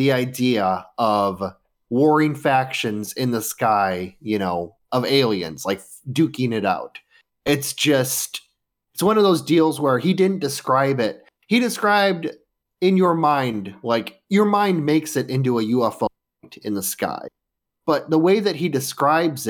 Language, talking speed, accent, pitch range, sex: English, 155 wpm, American, 115-155 Hz, male